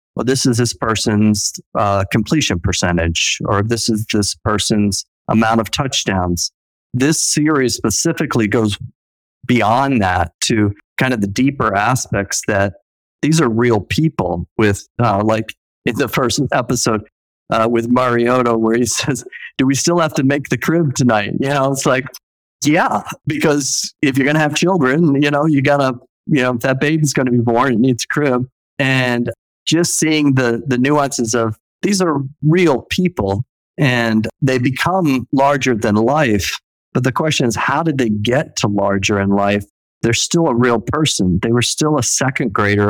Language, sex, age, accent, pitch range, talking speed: English, male, 50-69, American, 110-140 Hz, 175 wpm